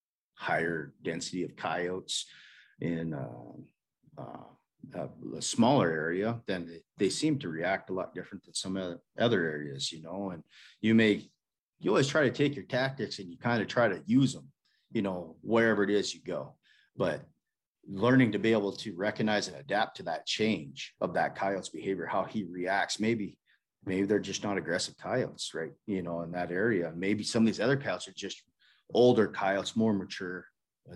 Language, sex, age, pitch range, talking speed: English, male, 40-59, 95-120 Hz, 180 wpm